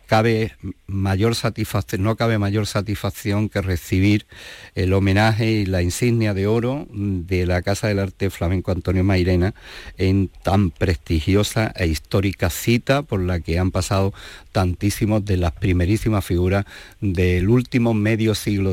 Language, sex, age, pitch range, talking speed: Spanish, male, 50-69, 90-105 Hz, 140 wpm